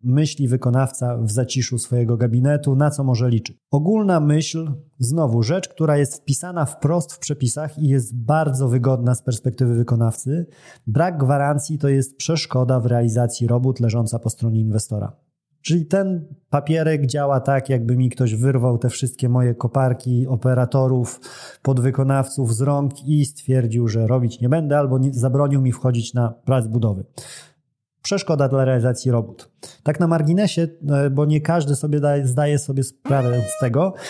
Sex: male